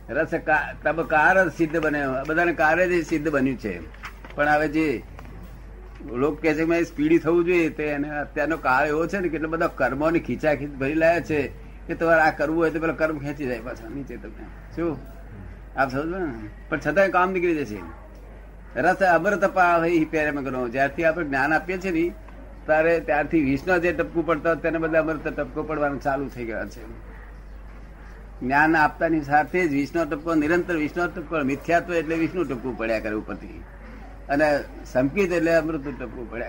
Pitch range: 135-165 Hz